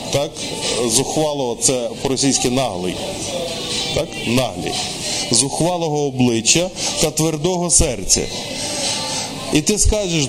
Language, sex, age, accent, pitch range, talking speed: Ukrainian, male, 20-39, native, 145-185 Hz, 85 wpm